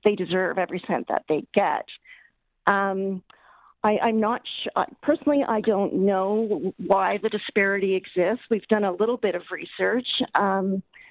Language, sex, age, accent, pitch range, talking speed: English, female, 40-59, American, 185-215 Hz, 145 wpm